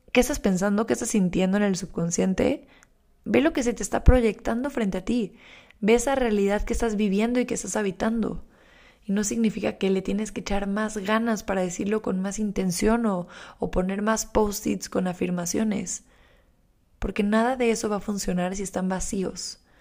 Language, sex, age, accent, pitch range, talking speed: Spanish, female, 20-39, Mexican, 185-220 Hz, 185 wpm